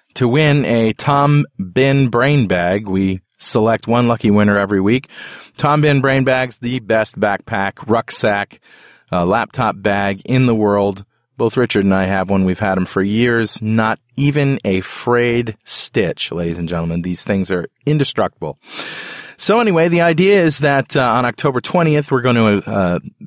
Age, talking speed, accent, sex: 30-49, 170 wpm, American, male